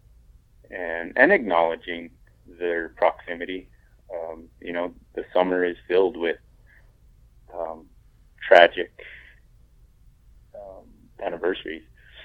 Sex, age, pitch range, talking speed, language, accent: male, 30-49, 85-130 Hz, 85 wpm, English, American